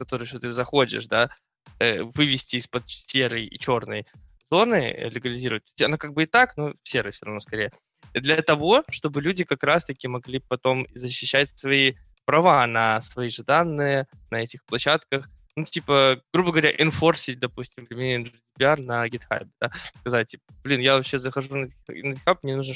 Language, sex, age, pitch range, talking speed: Russian, male, 20-39, 120-145 Hz, 165 wpm